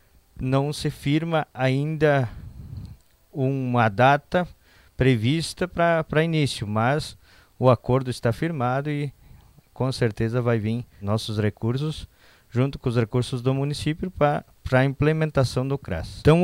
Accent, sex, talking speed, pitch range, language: Brazilian, male, 120 wpm, 115-140 Hz, Portuguese